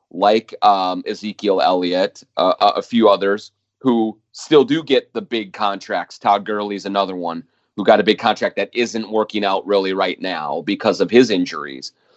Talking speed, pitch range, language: 180 wpm, 100-120 Hz, English